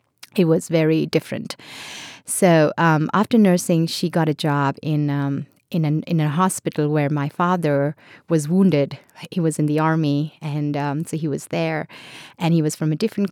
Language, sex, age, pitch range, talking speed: English, female, 30-49, 150-180 Hz, 185 wpm